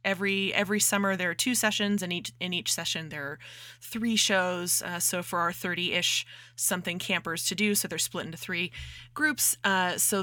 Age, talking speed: 20-39, 195 wpm